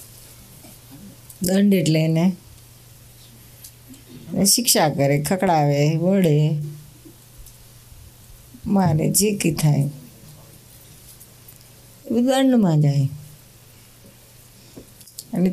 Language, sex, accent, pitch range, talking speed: Gujarati, female, native, 120-155 Hz, 60 wpm